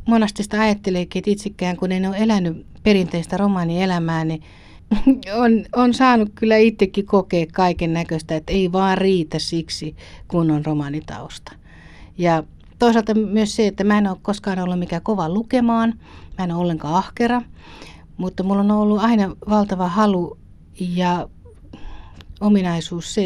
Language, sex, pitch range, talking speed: Finnish, female, 150-205 Hz, 140 wpm